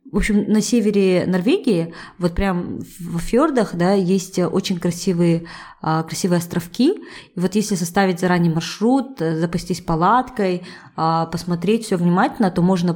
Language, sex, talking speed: Russian, female, 130 wpm